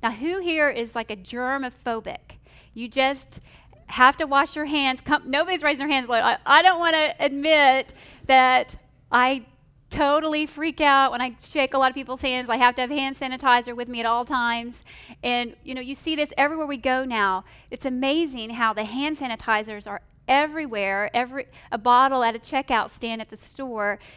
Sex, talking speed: female, 195 wpm